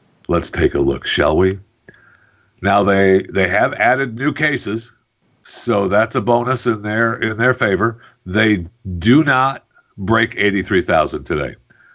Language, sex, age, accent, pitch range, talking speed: English, male, 60-79, American, 95-120 Hz, 150 wpm